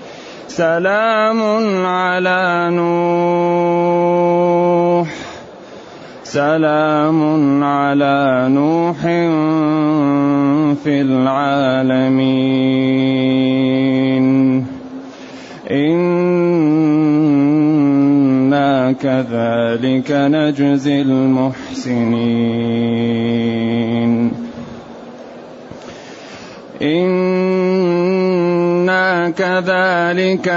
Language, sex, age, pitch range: Arabic, male, 30-49, 145-185 Hz